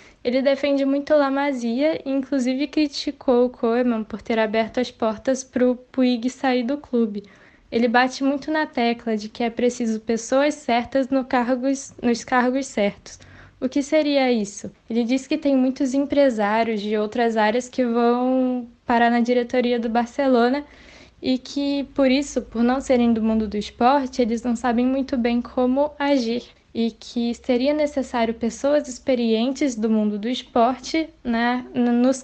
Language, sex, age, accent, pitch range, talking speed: Portuguese, female, 10-29, Brazilian, 230-270 Hz, 155 wpm